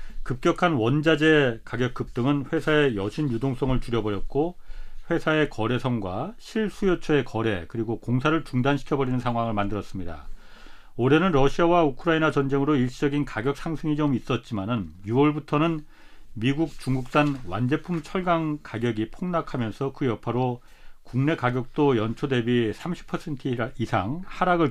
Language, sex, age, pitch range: Korean, male, 40-59, 115-155 Hz